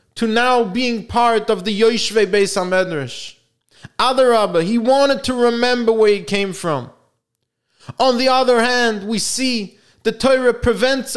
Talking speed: 145 wpm